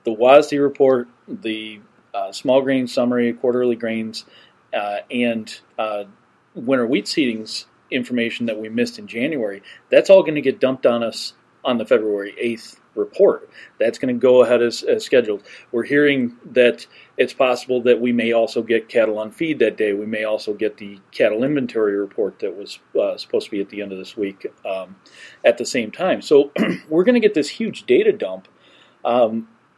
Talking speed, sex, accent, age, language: 185 wpm, male, American, 40-59, English